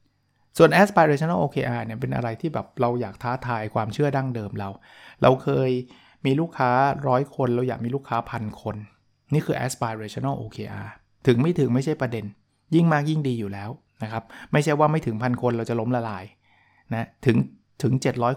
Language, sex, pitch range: Thai, male, 115-150 Hz